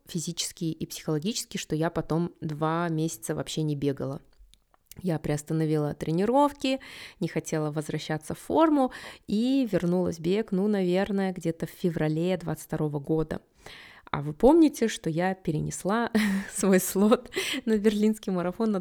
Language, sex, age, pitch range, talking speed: Russian, female, 20-39, 165-225 Hz, 135 wpm